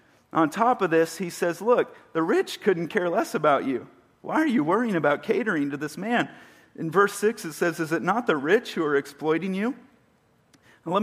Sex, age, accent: male, 40-59, American